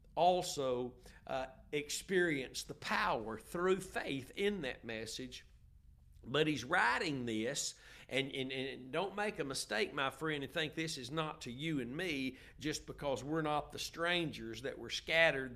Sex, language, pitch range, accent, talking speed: male, English, 125-175 Hz, American, 160 wpm